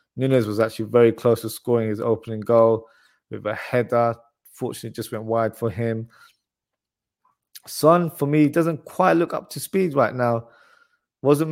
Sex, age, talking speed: male, 20-39, 165 wpm